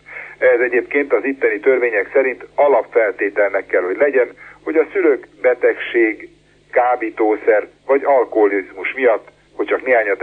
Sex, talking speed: male, 125 wpm